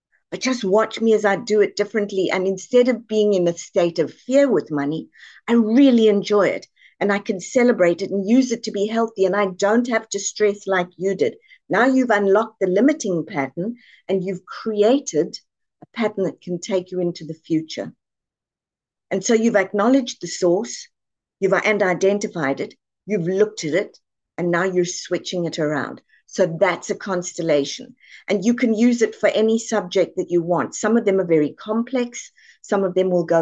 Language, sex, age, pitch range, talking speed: English, female, 50-69, 180-225 Hz, 195 wpm